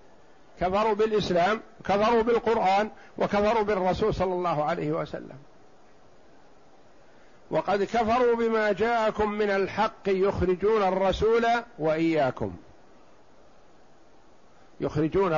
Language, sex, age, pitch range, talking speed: Arabic, male, 50-69, 155-200 Hz, 80 wpm